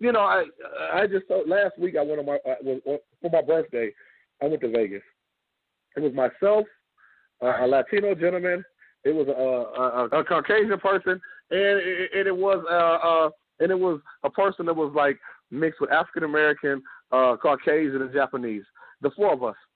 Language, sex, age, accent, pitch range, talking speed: English, male, 30-49, American, 150-220 Hz, 190 wpm